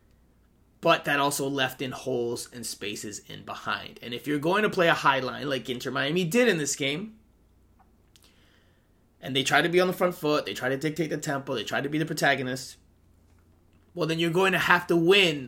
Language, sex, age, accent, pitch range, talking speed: English, male, 30-49, American, 120-160 Hz, 210 wpm